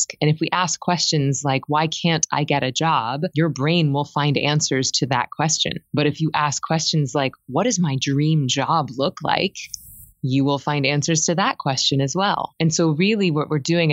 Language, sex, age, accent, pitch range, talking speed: English, female, 20-39, American, 135-160 Hz, 205 wpm